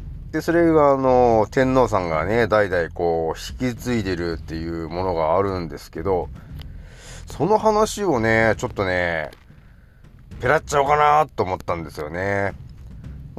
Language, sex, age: Japanese, male, 30-49